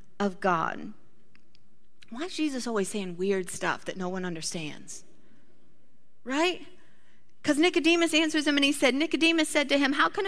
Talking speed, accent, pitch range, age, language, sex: 160 wpm, American, 230-315 Hz, 30-49, English, female